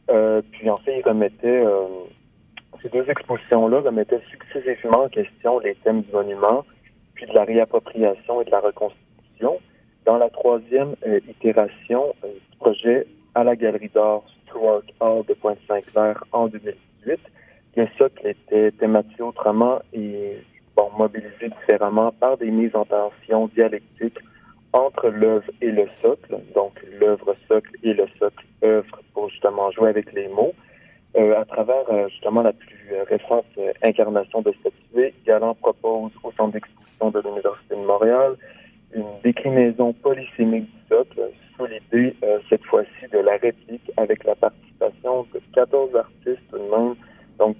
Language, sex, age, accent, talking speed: French, male, 40-59, French, 155 wpm